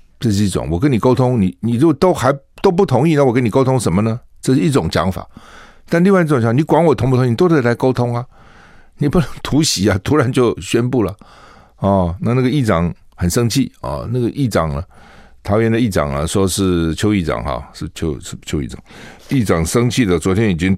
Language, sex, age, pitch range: Chinese, male, 60-79, 85-125 Hz